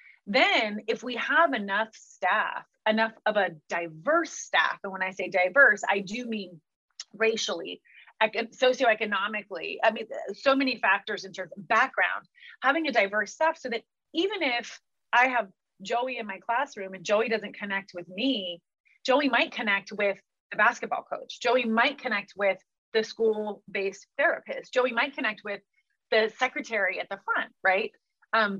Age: 30-49